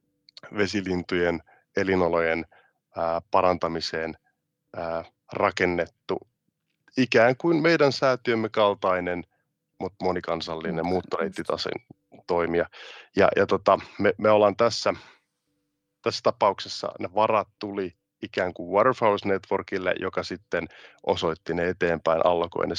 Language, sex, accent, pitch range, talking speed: Finnish, male, native, 90-110 Hz, 95 wpm